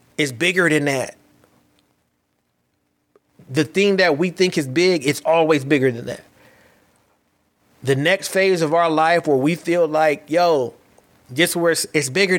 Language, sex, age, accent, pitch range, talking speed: English, male, 30-49, American, 125-160 Hz, 150 wpm